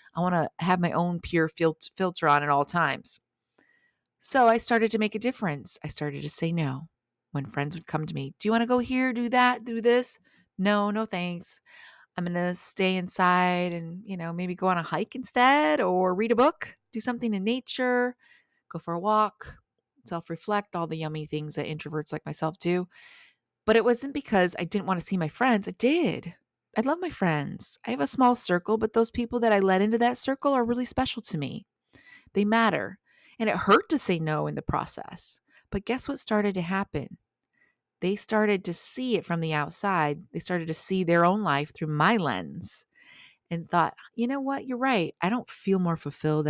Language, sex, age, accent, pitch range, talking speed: English, female, 30-49, American, 160-230 Hz, 210 wpm